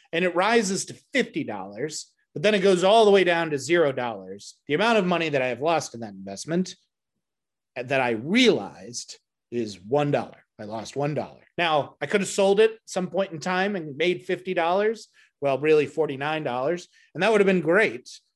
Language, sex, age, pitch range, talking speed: English, male, 30-49, 140-185 Hz, 185 wpm